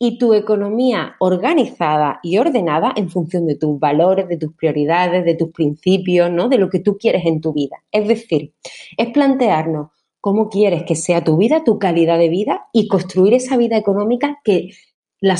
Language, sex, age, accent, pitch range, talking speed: Spanish, female, 30-49, Spanish, 170-230 Hz, 185 wpm